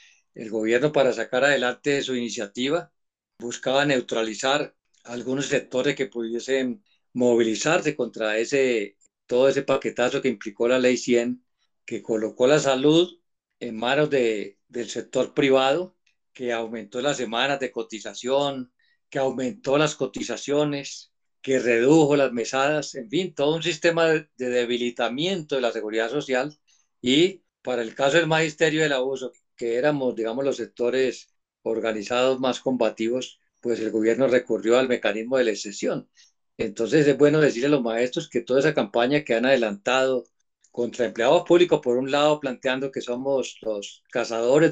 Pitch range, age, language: 115-140 Hz, 50-69, Spanish